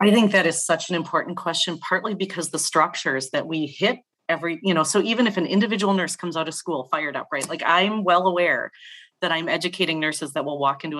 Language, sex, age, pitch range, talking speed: English, female, 30-49, 155-190 Hz, 235 wpm